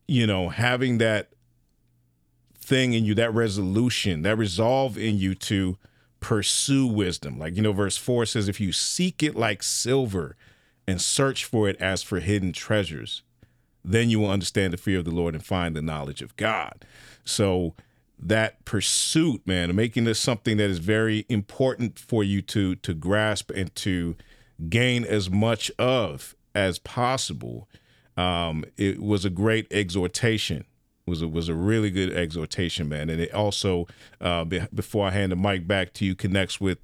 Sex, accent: male, American